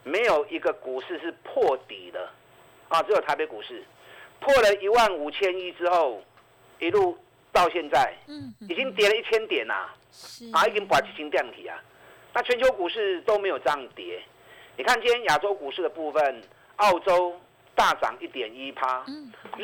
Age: 50-69